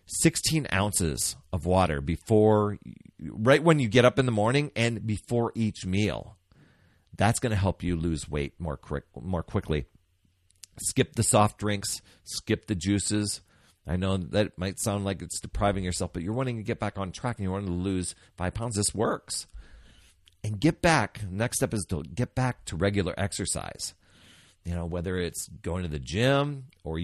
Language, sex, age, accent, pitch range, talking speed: English, male, 40-59, American, 90-120 Hz, 180 wpm